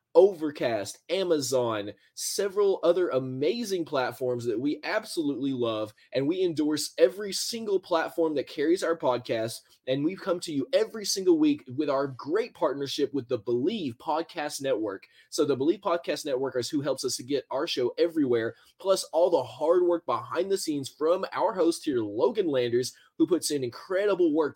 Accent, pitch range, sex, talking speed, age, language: American, 135-230 Hz, male, 170 wpm, 20-39, English